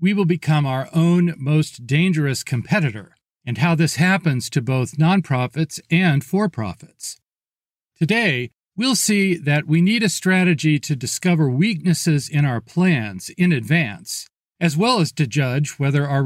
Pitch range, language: 140-185 Hz, English